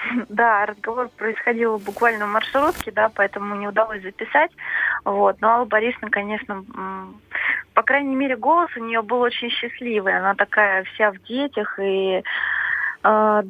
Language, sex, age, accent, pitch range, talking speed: Russian, female, 20-39, native, 195-230 Hz, 145 wpm